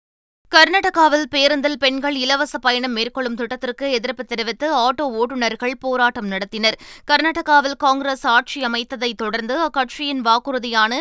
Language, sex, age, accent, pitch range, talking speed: Tamil, female, 20-39, native, 235-285 Hz, 110 wpm